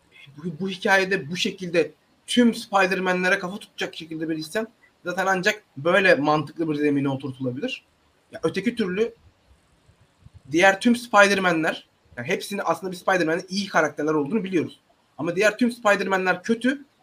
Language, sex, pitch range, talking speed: Turkish, male, 150-220 Hz, 130 wpm